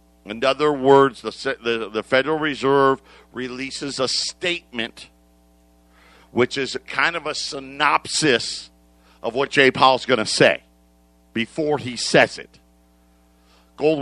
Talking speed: 125 wpm